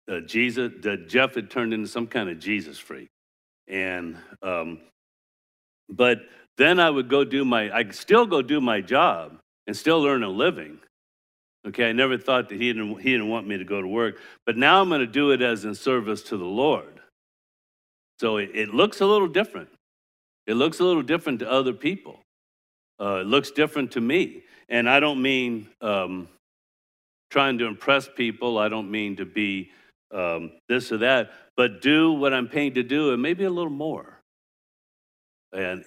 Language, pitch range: English, 100-130 Hz